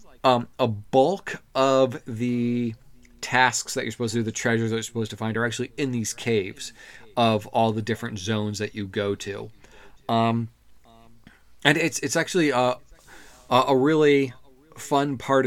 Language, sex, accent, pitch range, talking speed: English, male, American, 110-125 Hz, 165 wpm